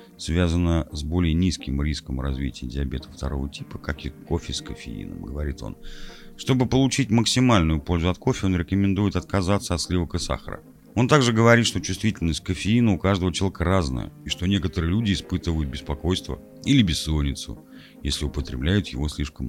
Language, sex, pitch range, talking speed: Russian, male, 75-100 Hz, 155 wpm